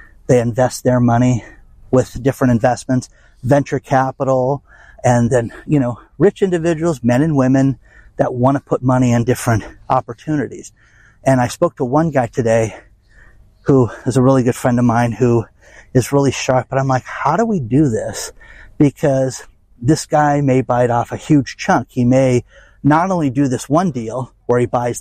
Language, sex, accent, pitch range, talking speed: English, male, American, 115-135 Hz, 175 wpm